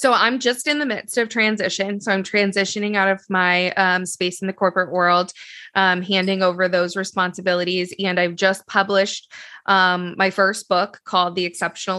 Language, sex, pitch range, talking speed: English, female, 185-210 Hz, 180 wpm